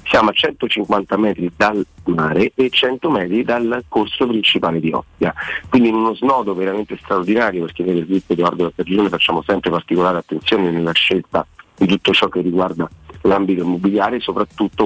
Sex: male